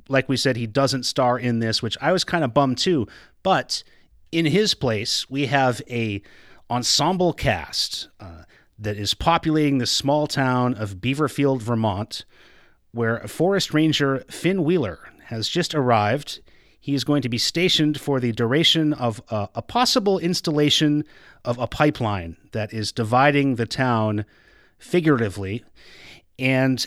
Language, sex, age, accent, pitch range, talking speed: English, male, 30-49, American, 115-150 Hz, 150 wpm